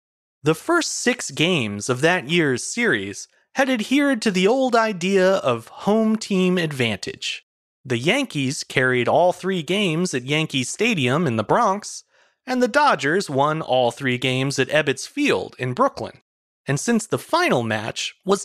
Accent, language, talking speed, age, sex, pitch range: American, English, 155 wpm, 30-49, male, 140-235 Hz